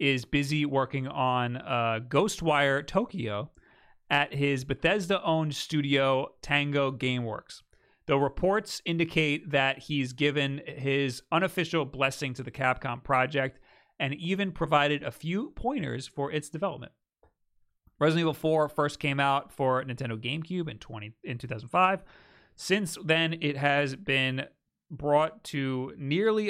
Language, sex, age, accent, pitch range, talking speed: English, male, 30-49, American, 130-160 Hz, 125 wpm